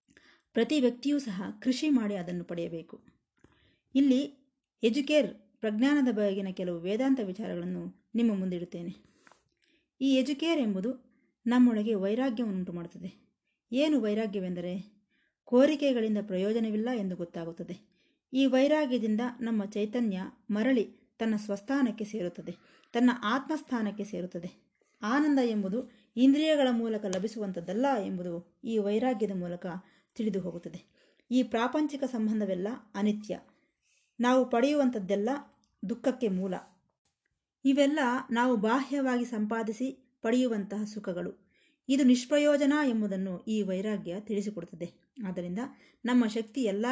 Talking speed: 95 wpm